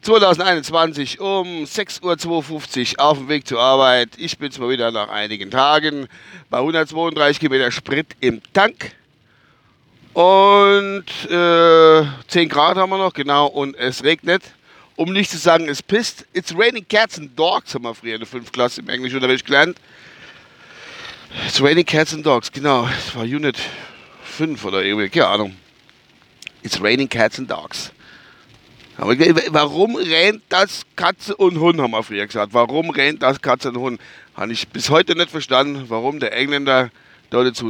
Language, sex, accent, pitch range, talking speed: German, male, German, 120-165 Hz, 160 wpm